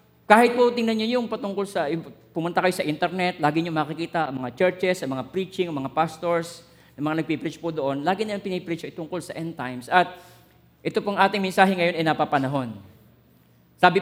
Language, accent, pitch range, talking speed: Filipino, native, 155-210 Hz, 195 wpm